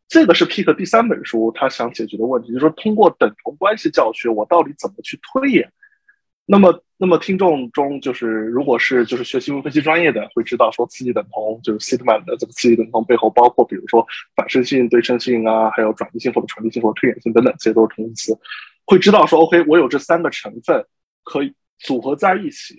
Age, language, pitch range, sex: 20-39, Chinese, 115-170 Hz, male